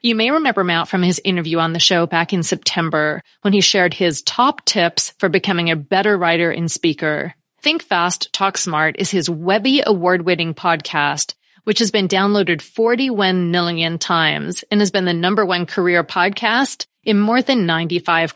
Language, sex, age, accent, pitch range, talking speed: English, female, 30-49, American, 170-220 Hz, 175 wpm